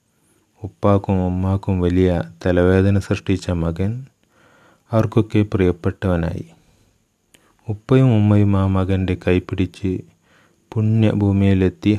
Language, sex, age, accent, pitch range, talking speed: Malayalam, male, 30-49, native, 90-100 Hz, 70 wpm